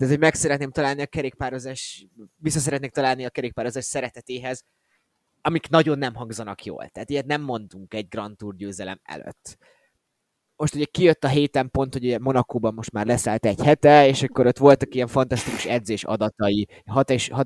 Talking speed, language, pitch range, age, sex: 165 wpm, Hungarian, 110-135 Hz, 20-39, male